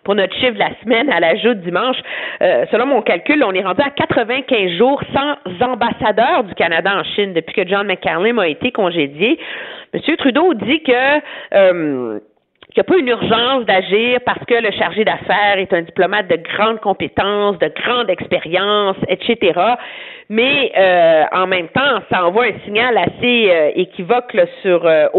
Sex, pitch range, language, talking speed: female, 180-245 Hz, French, 175 wpm